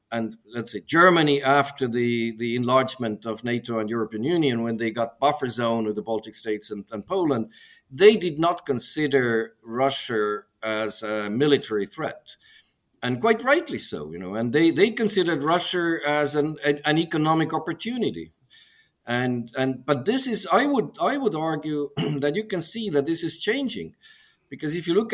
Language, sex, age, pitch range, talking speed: English, male, 50-69, 115-155 Hz, 170 wpm